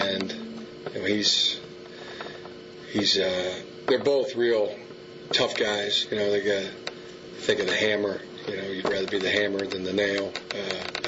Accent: American